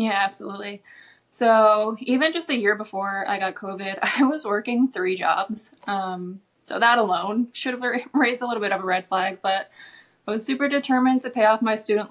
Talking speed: 200 wpm